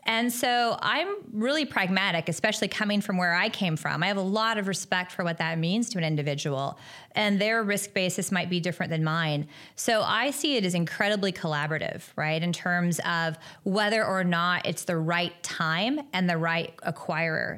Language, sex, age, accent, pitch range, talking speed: English, female, 30-49, American, 160-200 Hz, 190 wpm